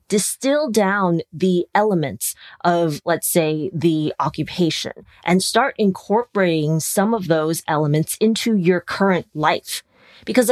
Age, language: 30-49, English